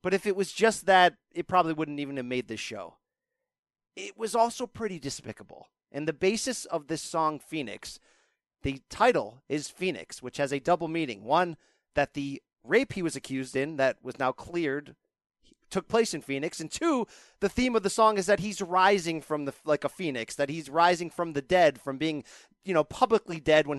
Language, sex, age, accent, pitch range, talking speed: English, male, 30-49, American, 145-200 Hz, 200 wpm